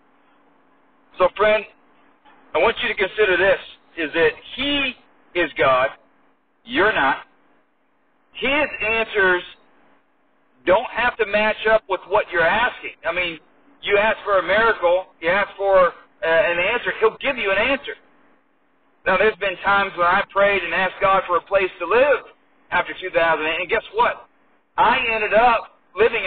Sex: male